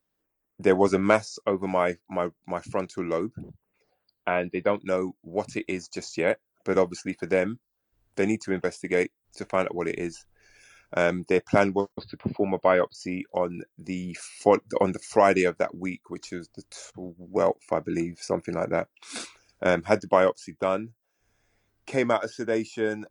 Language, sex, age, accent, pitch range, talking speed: English, male, 20-39, British, 90-105 Hz, 175 wpm